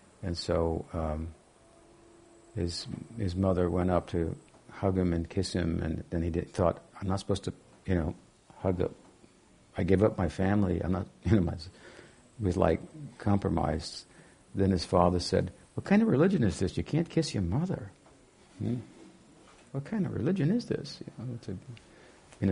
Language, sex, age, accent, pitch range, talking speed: English, male, 60-79, American, 90-110 Hz, 170 wpm